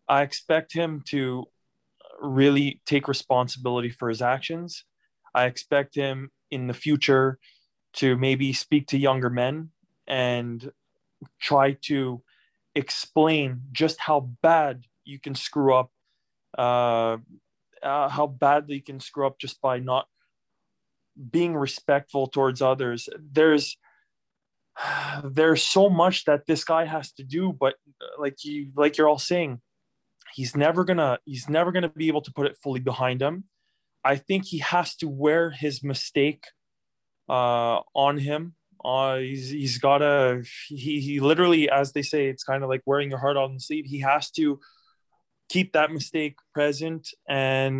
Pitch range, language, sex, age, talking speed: 135-160 Hz, English, male, 20-39, 150 wpm